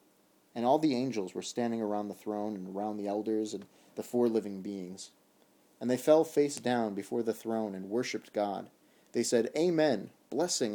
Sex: male